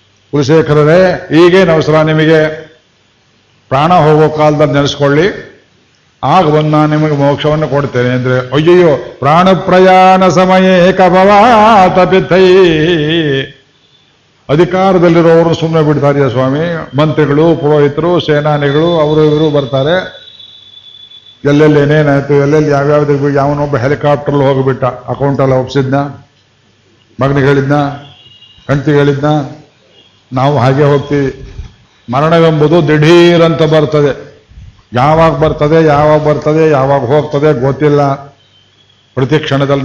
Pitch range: 125-155 Hz